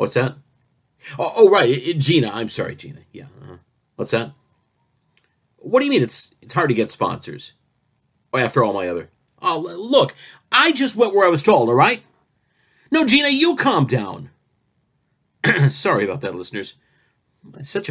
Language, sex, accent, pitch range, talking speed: English, male, American, 125-175 Hz, 170 wpm